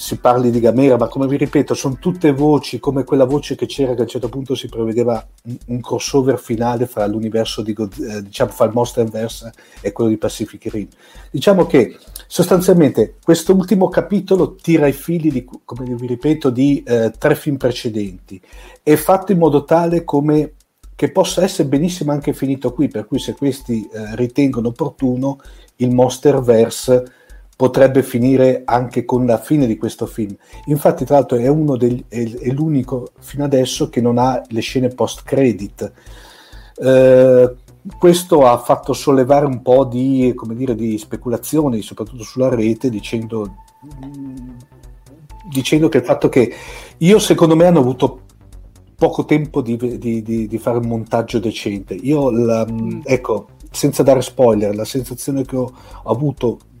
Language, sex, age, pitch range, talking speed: Italian, male, 50-69, 115-145 Hz, 165 wpm